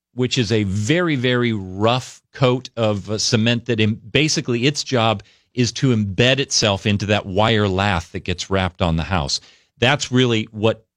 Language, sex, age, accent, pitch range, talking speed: English, male, 40-59, American, 100-140 Hz, 165 wpm